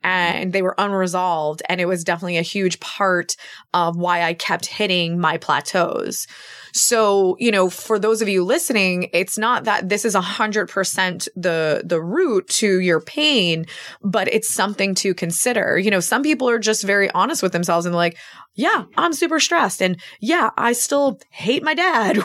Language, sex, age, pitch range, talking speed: English, female, 20-39, 175-220 Hz, 175 wpm